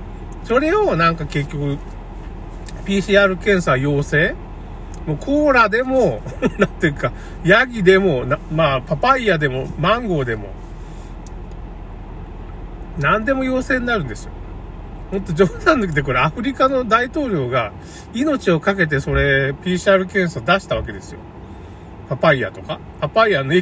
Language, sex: Japanese, male